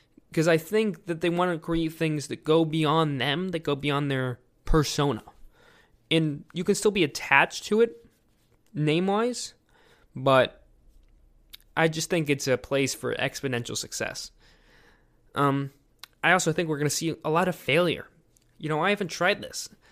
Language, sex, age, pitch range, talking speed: English, male, 20-39, 135-170 Hz, 165 wpm